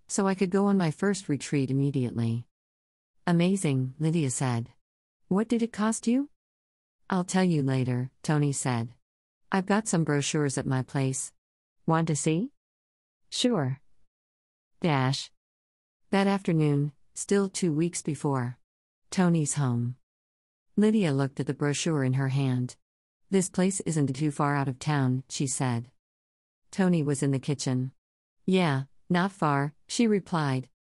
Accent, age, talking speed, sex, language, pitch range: American, 40-59, 140 wpm, female, English, 130-175 Hz